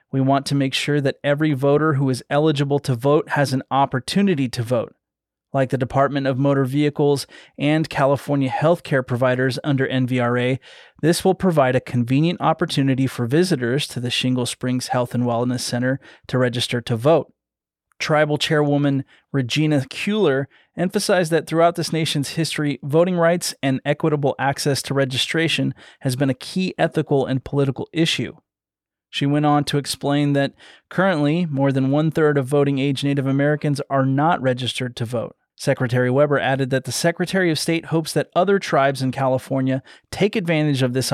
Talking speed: 165 wpm